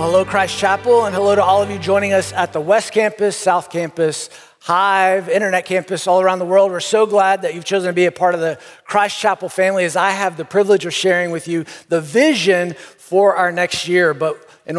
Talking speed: 225 wpm